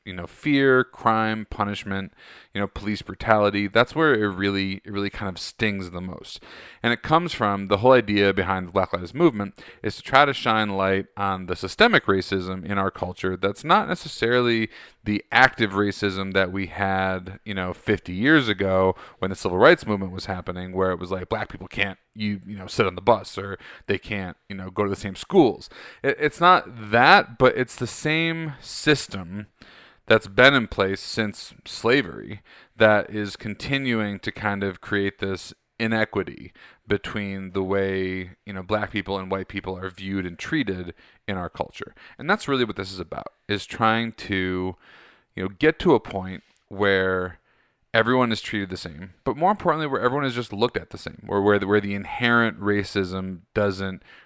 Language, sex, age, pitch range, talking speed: English, male, 30-49, 95-115 Hz, 190 wpm